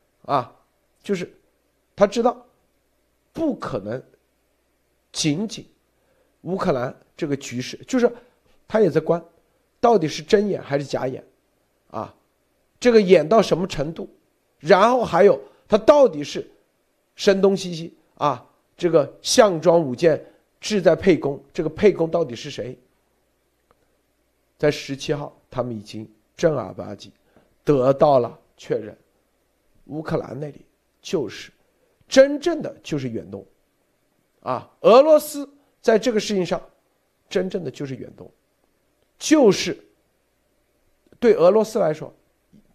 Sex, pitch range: male, 145-225 Hz